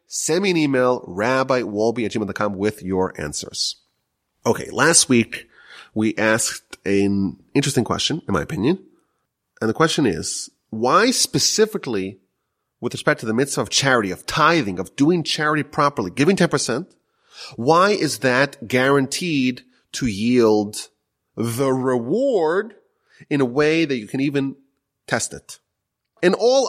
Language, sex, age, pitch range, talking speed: English, male, 30-49, 110-175 Hz, 135 wpm